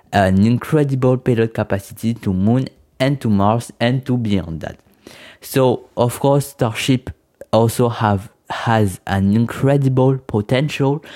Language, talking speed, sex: French, 125 wpm, male